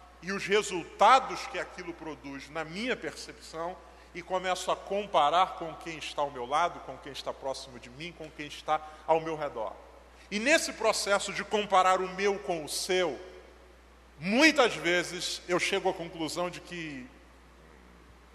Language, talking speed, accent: Portuguese, 165 wpm, Brazilian